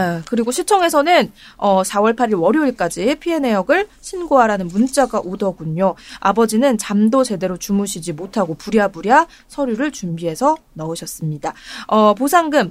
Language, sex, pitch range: Korean, female, 195-280 Hz